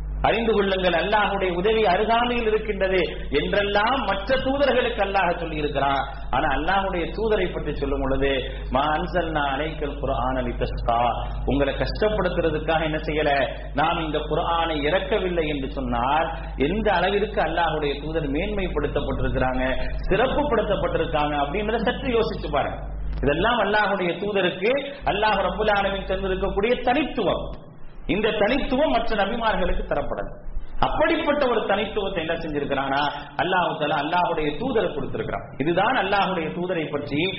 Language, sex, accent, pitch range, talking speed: English, male, Indian, 155-220 Hz, 50 wpm